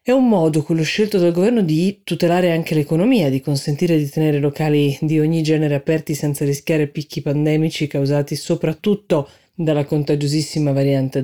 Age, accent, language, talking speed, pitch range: 30-49, native, Italian, 155 wpm, 140-165 Hz